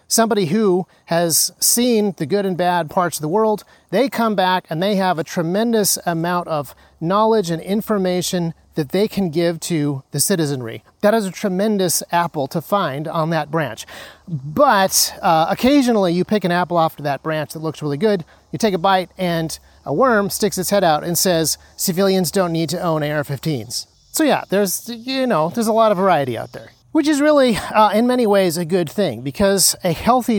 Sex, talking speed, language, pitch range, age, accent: male, 200 wpm, English, 160-205 Hz, 30-49, American